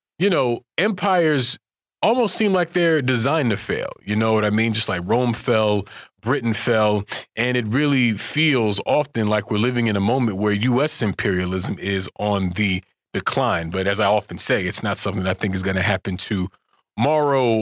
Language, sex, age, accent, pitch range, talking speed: English, male, 30-49, American, 105-155 Hz, 185 wpm